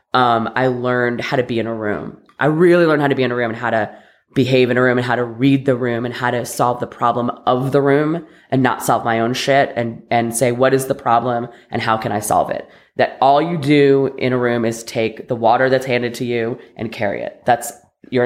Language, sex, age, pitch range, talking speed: English, female, 20-39, 115-135 Hz, 260 wpm